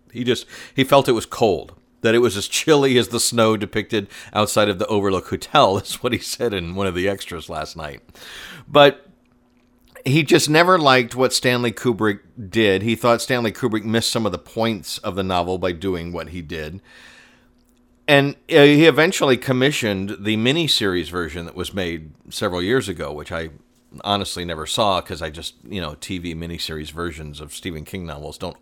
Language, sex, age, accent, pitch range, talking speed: English, male, 50-69, American, 90-125 Hz, 190 wpm